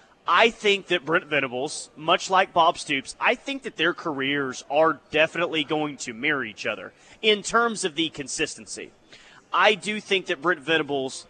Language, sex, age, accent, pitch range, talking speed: English, male, 30-49, American, 145-185 Hz, 170 wpm